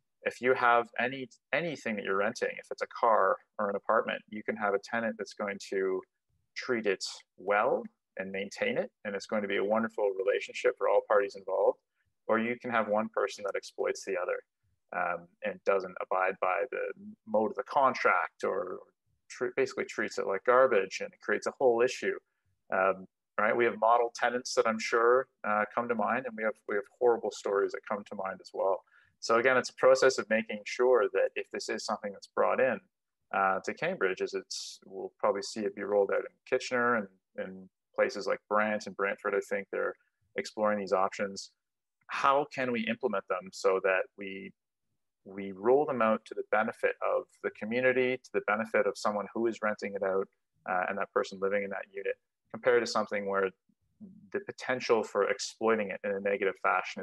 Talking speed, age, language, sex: 200 wpm, 30-49, English, male